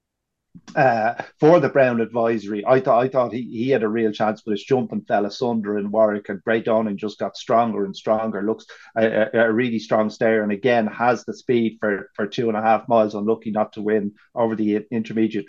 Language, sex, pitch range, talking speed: English, male, 105-125 Hz, 225 wpm